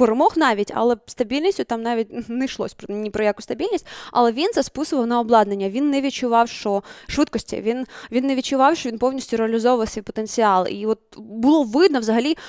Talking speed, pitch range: 185 wpm, 220-275 Hz